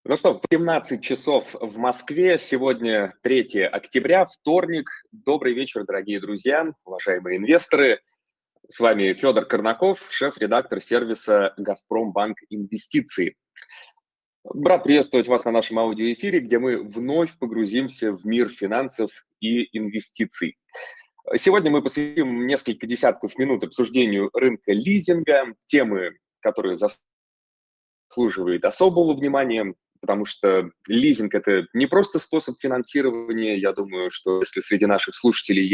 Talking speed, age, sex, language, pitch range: 115 wpm, 20-39, male, Russian, 105-145 Hz